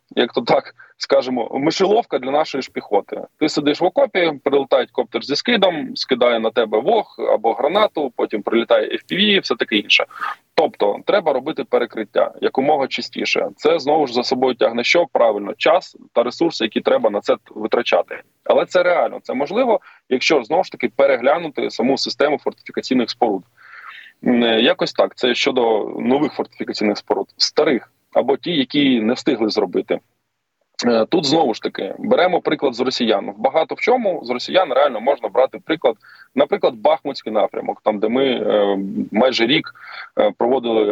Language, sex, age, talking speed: Ukrainian, male, 20-39, 155 wpm